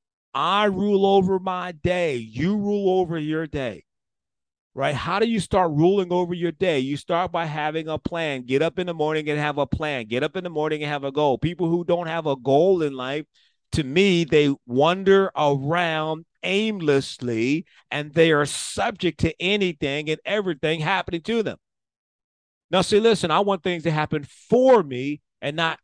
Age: 40-59